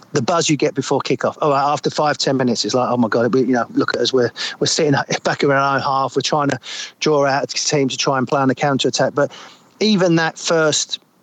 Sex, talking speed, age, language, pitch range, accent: male, 255 wpm, 40-59, English, 135-155 Hz, British